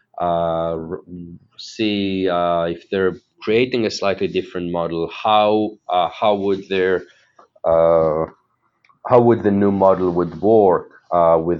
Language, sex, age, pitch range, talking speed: English, male, 40-59, 90-115 Hz, 130 wpm